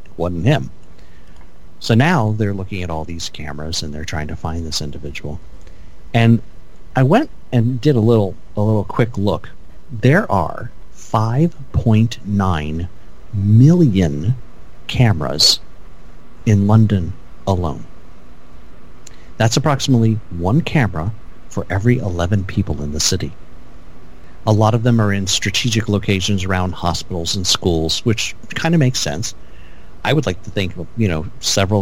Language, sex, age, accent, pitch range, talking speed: English, male, 50-69, American, 85-110 Hz, 140 wpm